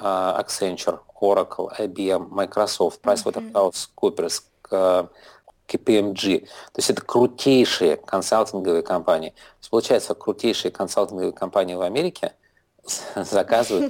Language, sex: Russian, male